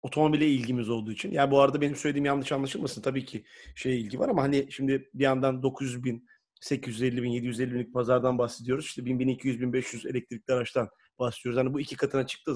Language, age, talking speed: Turkish, 30-49, 195 wpm